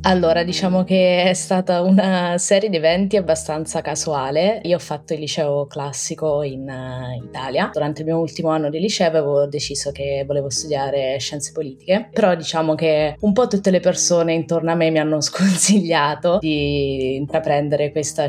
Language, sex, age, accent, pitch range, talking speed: Italian, female, 20-39, native, 140-165 Hz, 165 wpm